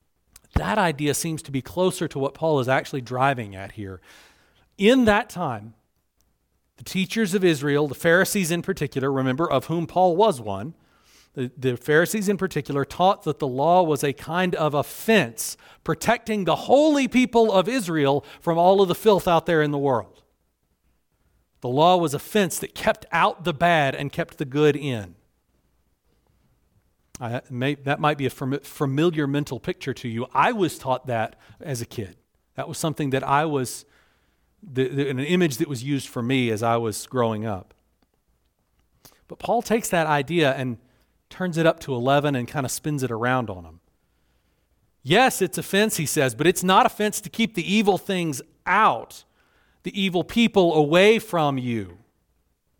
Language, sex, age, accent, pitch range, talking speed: English, male, 40-59, American, 125-175 Hz, 170 wpm